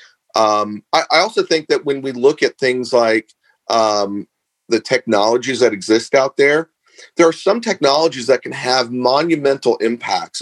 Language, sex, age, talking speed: English, male, 40-59, 160 wpm